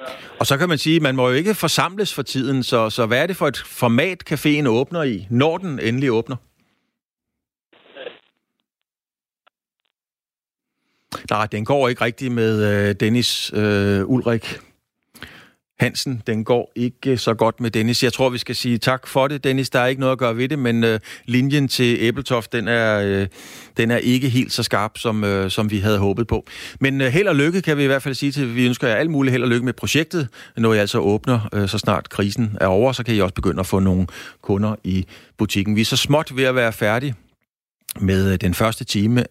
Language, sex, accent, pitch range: Danish, male, native, 100-130 Hz